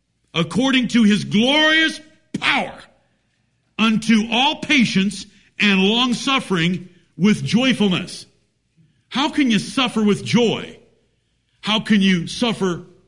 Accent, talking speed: American, 105 wpm